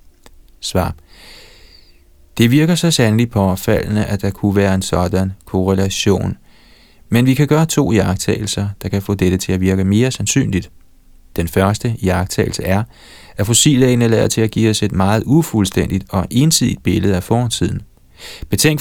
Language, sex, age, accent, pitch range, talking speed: Danish, male, 30-49, native, 95-115 Hz, 155 wpm